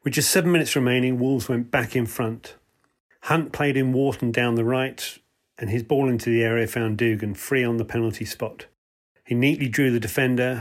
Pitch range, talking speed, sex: 115-135 Hz, 200 wpm, male